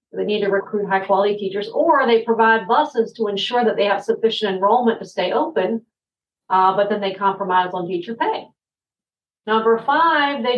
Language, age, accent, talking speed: English, 40-59, American, 175 wpm